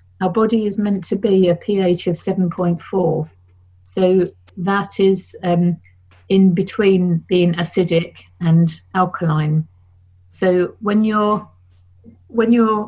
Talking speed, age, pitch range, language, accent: 115 wpm, 50-69, 165-190 Hz, English, British